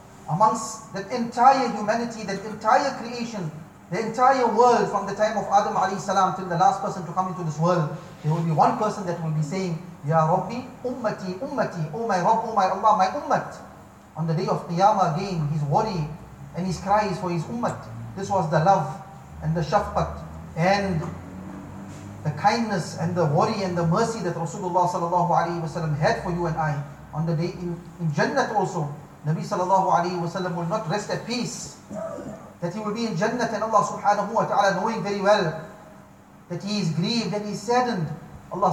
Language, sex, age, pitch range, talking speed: English, male, 40-59, 165-210 Hz, 195 wpm